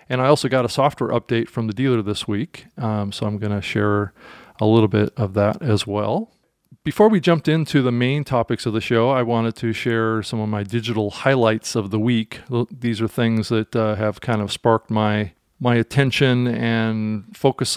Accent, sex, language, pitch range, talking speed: American, male, English, 105-120 Hz, 205 wpm